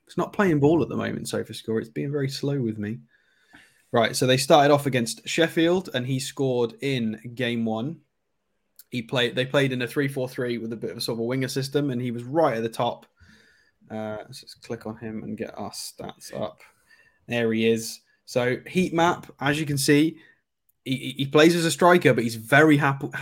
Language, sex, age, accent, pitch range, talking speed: English, male, 20-39, British, 115-145 Hz, 220 wpm